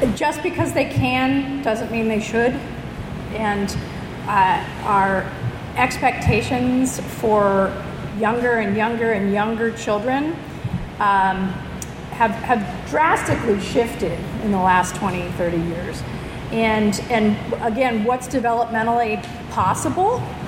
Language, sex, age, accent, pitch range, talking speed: English, female, 40-59, American, 210-255 Hz, 105 wpm